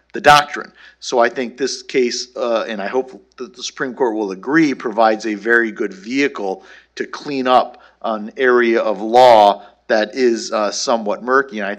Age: 50-69